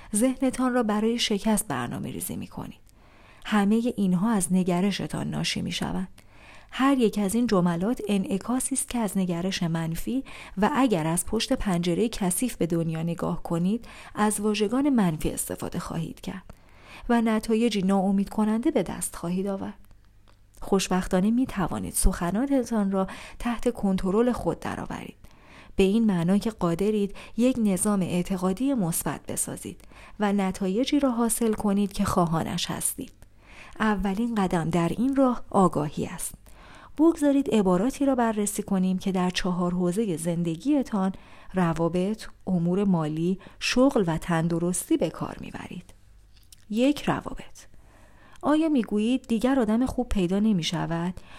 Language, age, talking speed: Persian, 40-59, 130 wpm